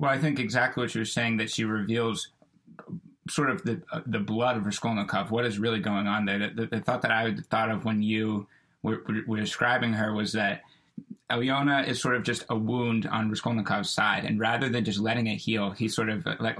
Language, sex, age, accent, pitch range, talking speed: Spanish, male, 20-39, American, 105-120 Hz, 225 wpm